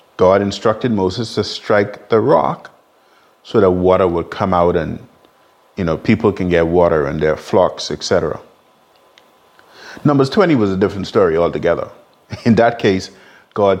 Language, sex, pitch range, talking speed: English, male, 90-115 Hz, 150 wpm